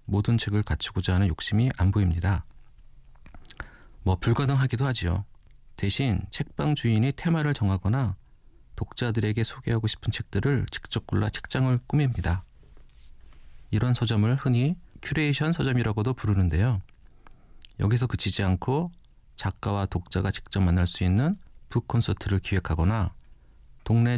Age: 40-59